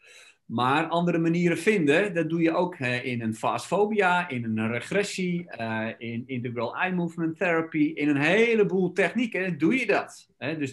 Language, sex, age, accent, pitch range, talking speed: Dutch, male, 50-69, Dutch, 125-190 Hz, 150 wpm